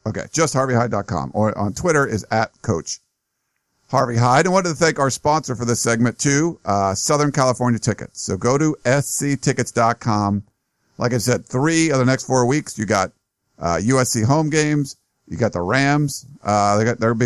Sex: male